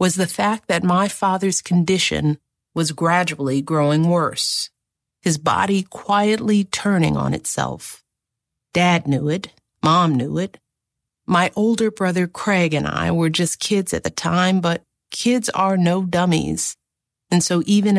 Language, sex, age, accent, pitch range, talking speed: German, female, 50-69, American, 120-180 Hz, 145 wpm